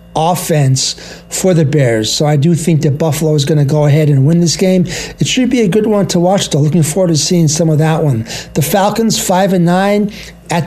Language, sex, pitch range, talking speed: English, male, 155-190 Hz, 235 wpm